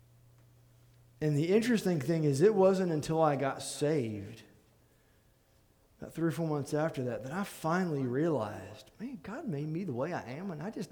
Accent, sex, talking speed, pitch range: American, male, 180 wpm, 140-215 Hz